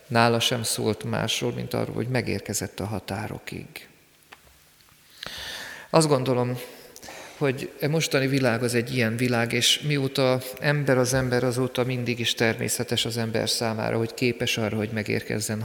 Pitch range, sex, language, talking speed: 115-135 Hz, male, Hungarian, 140 wpm